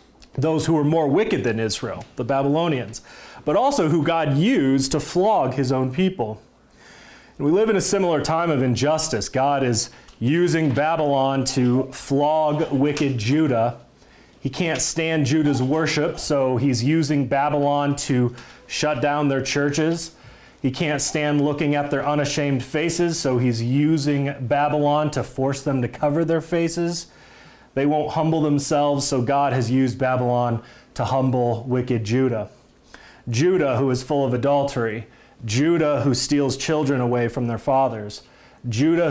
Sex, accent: male, American